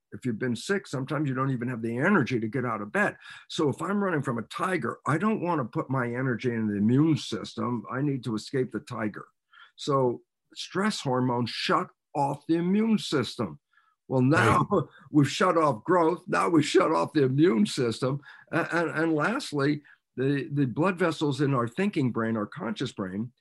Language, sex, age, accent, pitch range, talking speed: English, male, 50-69, American, 120-160 Hz, 195 wpm